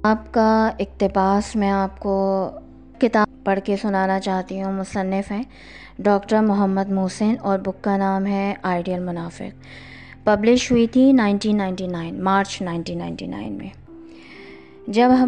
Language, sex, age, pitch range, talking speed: Urdu, female, 20-39, 190-245 Hz, 130 wpm